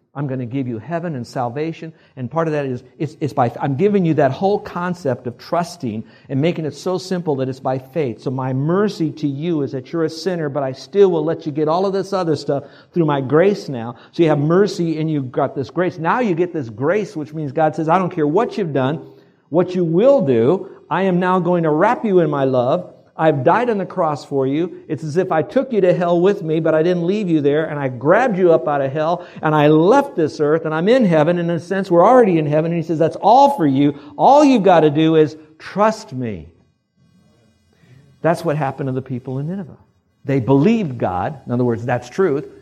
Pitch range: 140-180 Hz